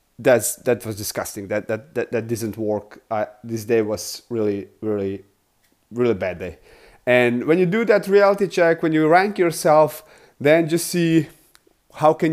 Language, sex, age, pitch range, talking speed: English, male, 30-49, 115-160 Hz, 175 wpm